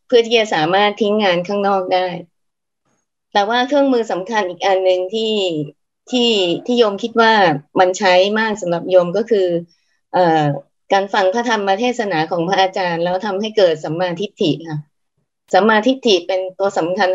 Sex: female